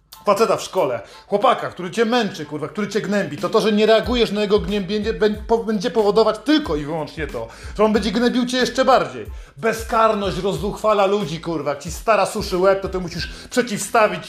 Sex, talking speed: male, 190 wpm